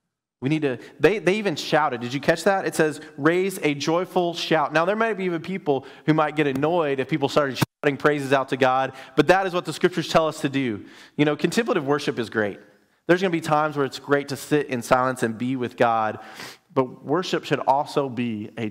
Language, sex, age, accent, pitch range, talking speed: English, male, 30-49, American, 125-165 Hz, 235 wpm